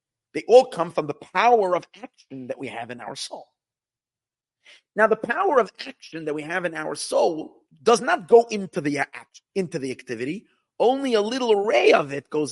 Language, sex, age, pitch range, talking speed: English, male, 50-69, 145-225 Hz, 195 wpm